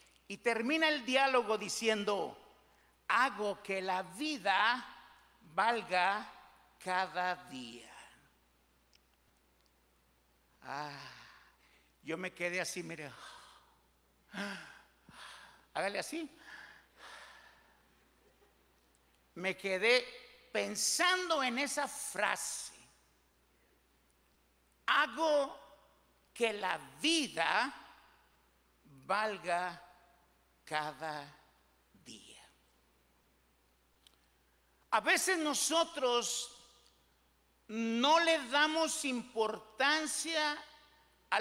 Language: English